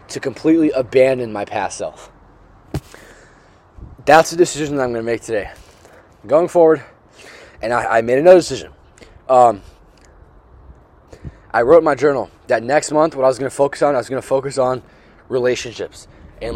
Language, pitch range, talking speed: English, 95-135 Hz, 165 wpm